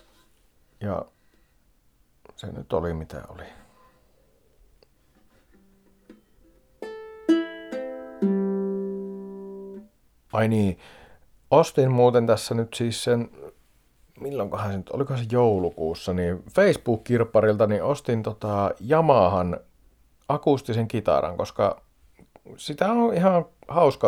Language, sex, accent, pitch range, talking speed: Finnish, male, native, 90-140 Hz, 80 wpm